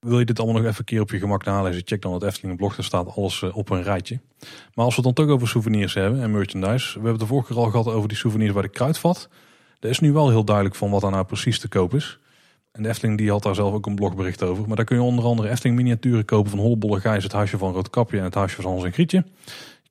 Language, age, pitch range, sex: Dutch, 30-49, 100-120 Hz, male